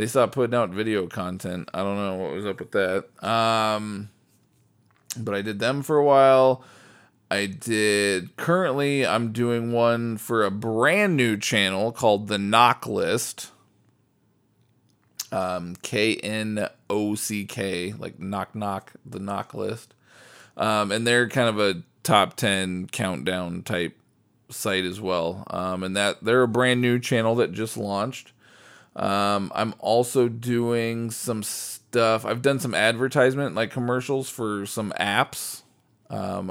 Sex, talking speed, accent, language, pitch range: male, 140 wpm, American, English, 100-125 Hz